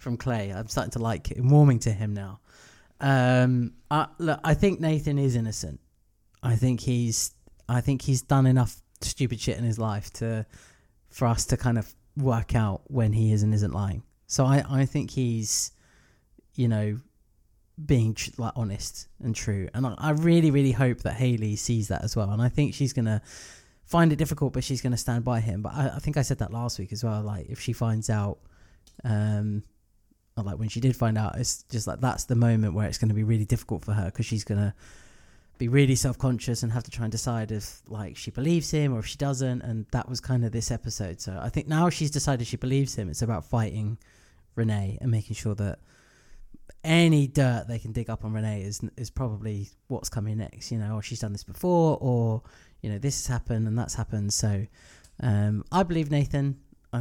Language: English